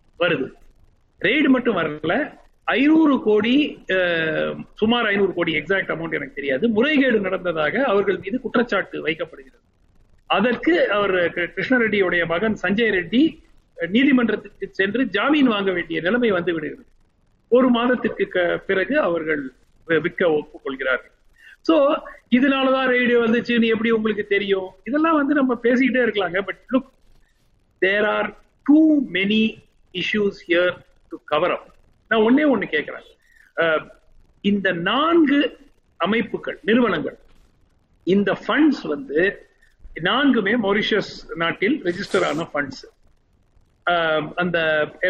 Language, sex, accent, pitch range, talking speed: Tamil, male, native, 180-260 Hz, 65 wpm